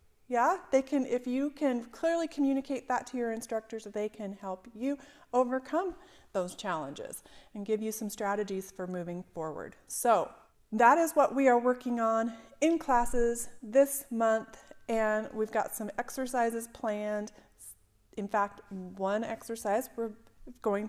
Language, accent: English, American